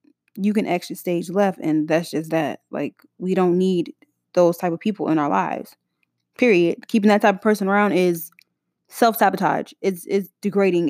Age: 10-29